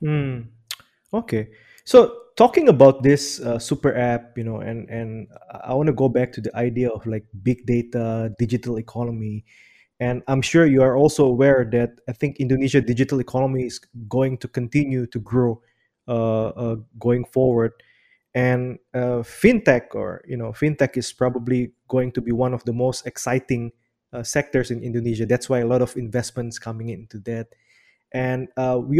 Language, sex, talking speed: English, male, 170 wpm